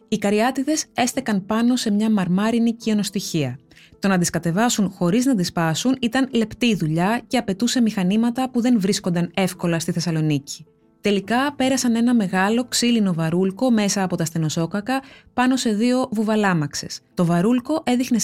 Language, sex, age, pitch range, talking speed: Greek, female, 20-39, 180-240 Hz, 150 wpm